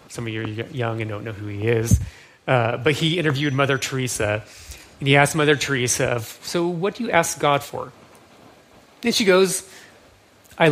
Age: 30-49